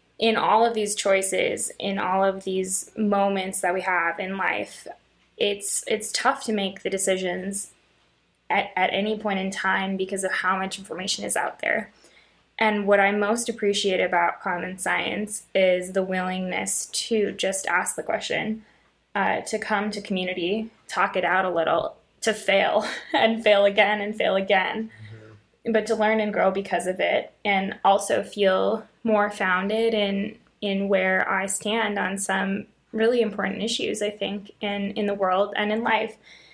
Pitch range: 190-220 Hz